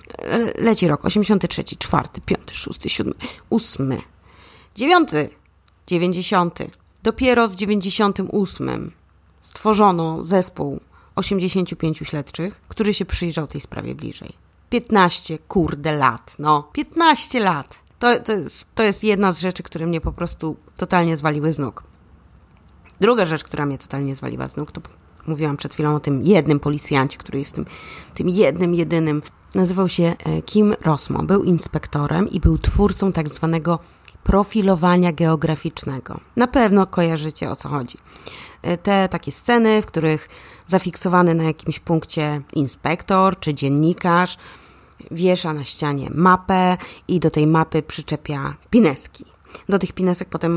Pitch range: 150-190 Hz